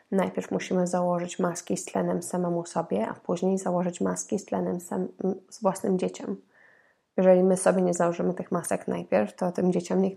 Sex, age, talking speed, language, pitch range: female, 20-39, 175 wpm, Polish, 175-190 Hz